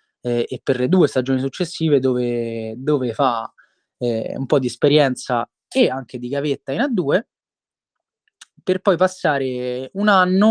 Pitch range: 125-180 Hz